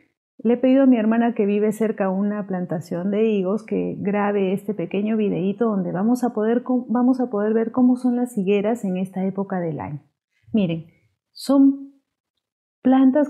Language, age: Spanish, 40-59